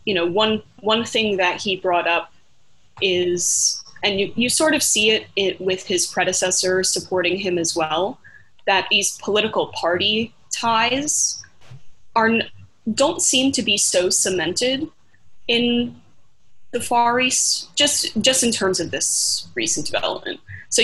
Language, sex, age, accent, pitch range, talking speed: English, female, 20-39, American, 180-235 Hz, 145 wpm